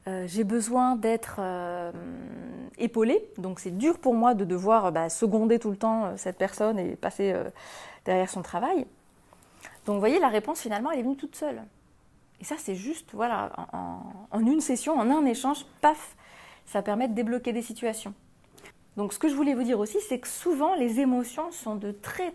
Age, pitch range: 30-49, 200-270 Hz